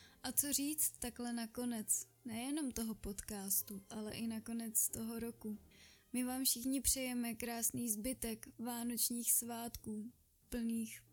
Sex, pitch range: female, 220-245 Hz